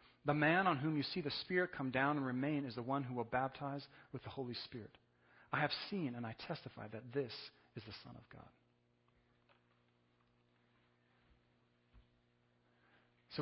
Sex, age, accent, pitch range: male, 40-59, American, 100-145 Hz